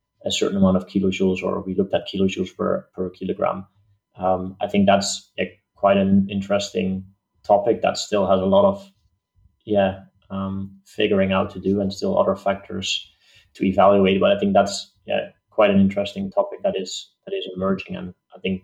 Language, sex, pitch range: English, male, 95-100 Hz